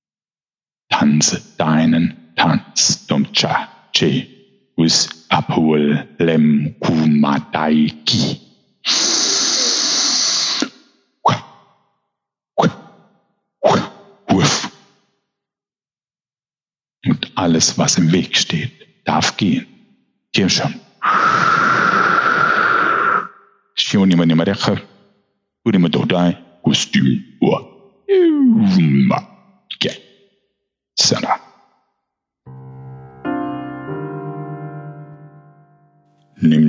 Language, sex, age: German, male, 60-79